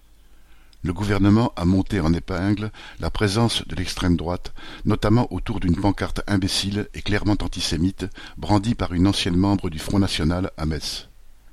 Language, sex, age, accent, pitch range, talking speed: French, male, 50-69, French, 90-105 Hz, 150 wpm